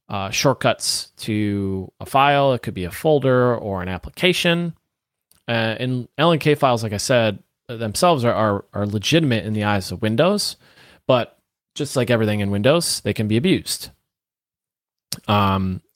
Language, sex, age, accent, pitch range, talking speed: English, male, 30-49, American, 105-135 Hz, 145 wpm